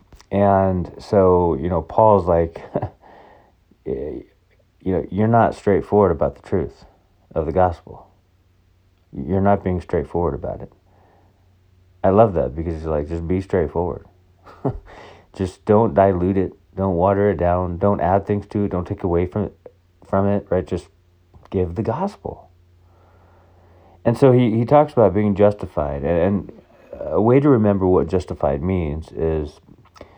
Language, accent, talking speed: English, American, 145 wpm